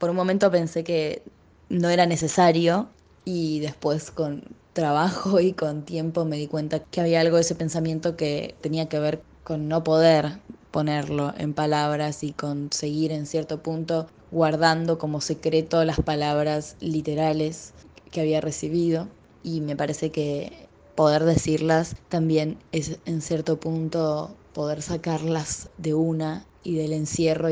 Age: 20-39